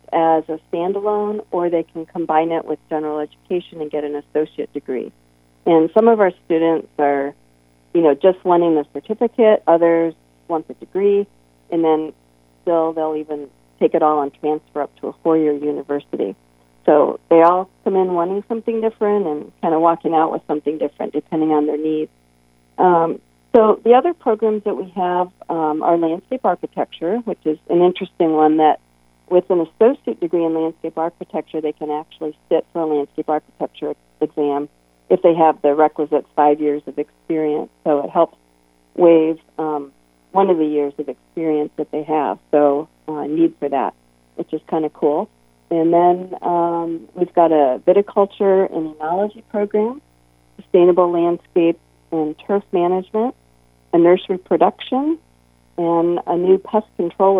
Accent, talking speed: American, 165 wpm